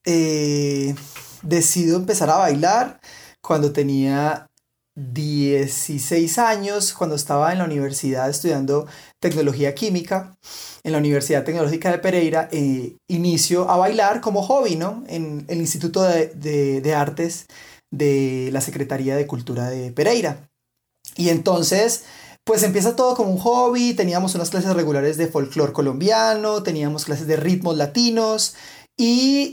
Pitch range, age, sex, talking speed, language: 145-190 Hz, 30-49, male, 130 wpm, Spanish